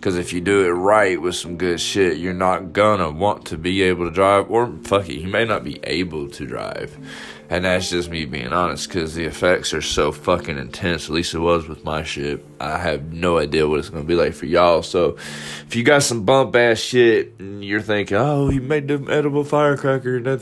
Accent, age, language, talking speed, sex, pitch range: American, 20-39, English, 235 wpm, male, 85-115 Hz